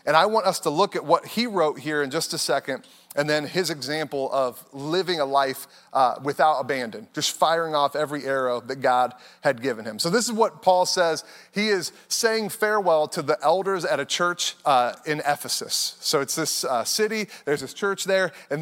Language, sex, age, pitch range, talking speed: English, male, 30-49, 150-195 Hz, 210 wpm